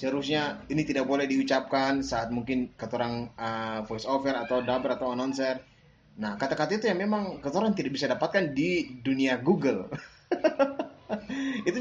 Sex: male